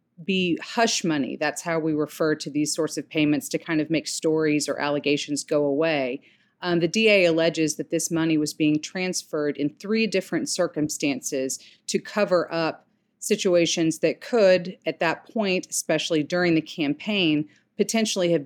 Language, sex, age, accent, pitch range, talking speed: English, female, 40-59, American, 150-185 Hz, 165 wpm